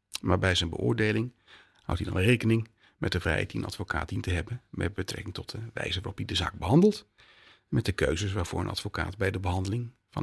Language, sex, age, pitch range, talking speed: Dutch, male, 40-59, 95-120 Hz, 225 wpm